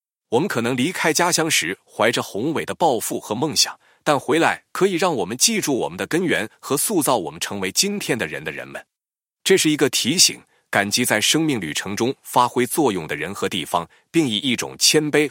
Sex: male